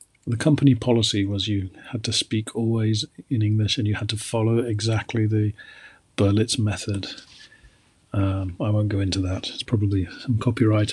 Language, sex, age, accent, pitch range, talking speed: English, male, 40-59, British, 105-125 Hz, 165 wpm